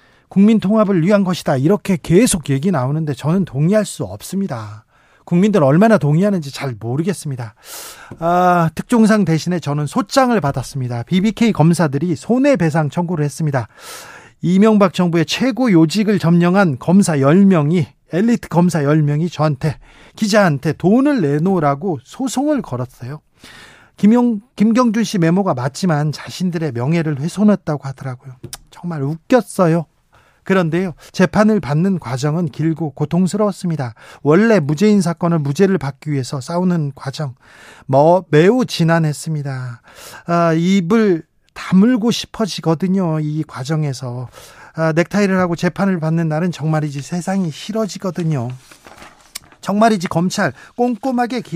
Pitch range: 150-195 Hz